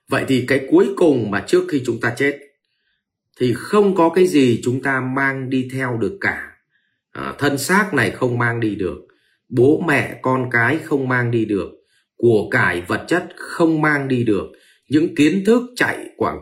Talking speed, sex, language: 190 wpm, male, Vietnamese